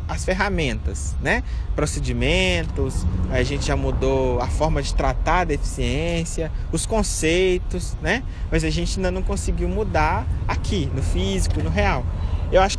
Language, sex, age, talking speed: Portuguese, male, 20-39, 145 wpm